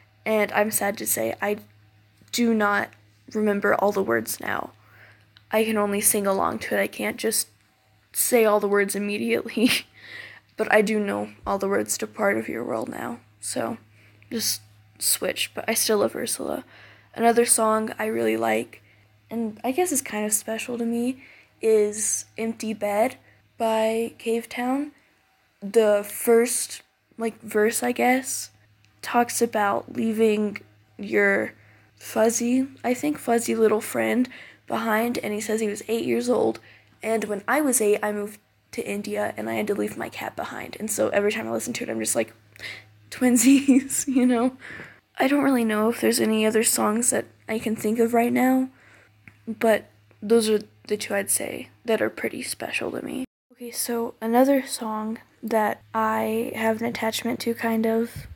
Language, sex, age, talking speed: English, female, 10-29, 170 wpm